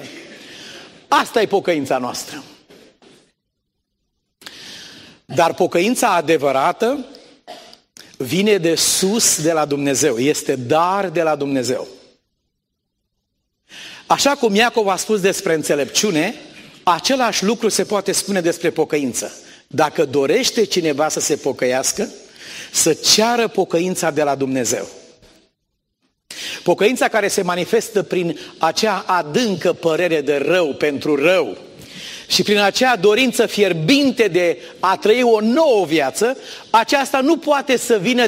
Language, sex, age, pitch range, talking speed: Romanian, male, 40-59, 175-240 Hz, 115 wpm